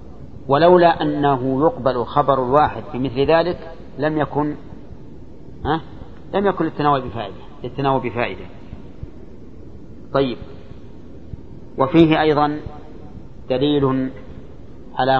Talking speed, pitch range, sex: 85 wpm, 120-145 Hz, male